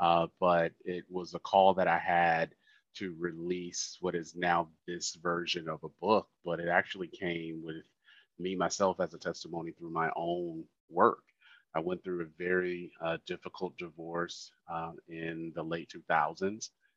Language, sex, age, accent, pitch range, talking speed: English, male, 30-49, American, 80-95 Hz, 165 wpm